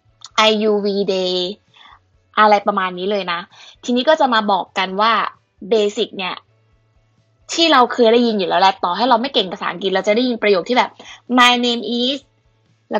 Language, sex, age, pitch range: Thai, female, 20-39, 195-250 Hz